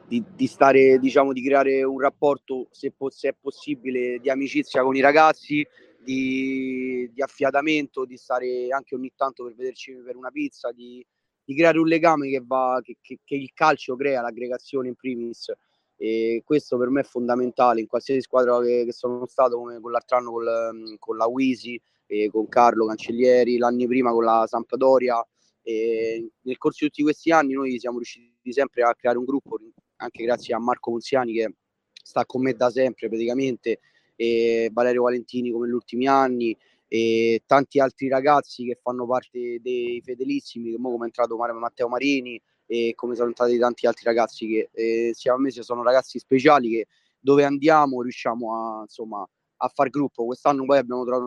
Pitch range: 120-135 Hz